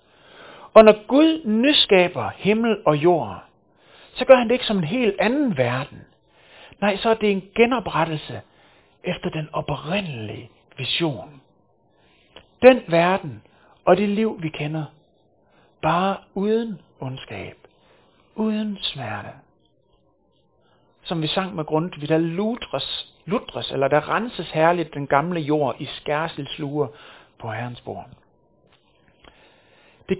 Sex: male